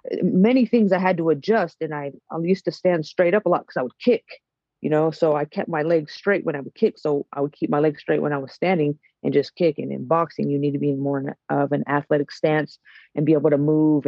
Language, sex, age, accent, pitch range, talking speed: English, female, 30-49, American, 145-175 Hz, 265 wpm